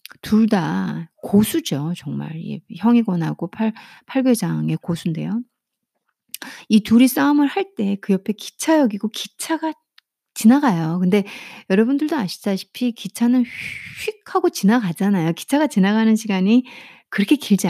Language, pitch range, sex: Korean, 190-275 Hz, female